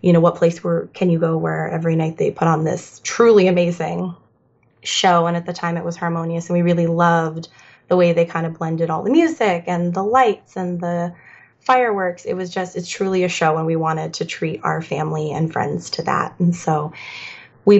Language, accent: English, American